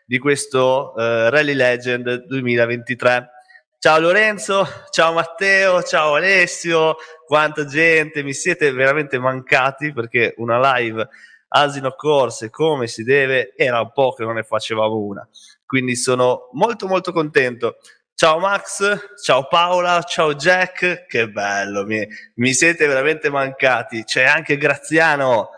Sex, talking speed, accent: male, 125 wpm, native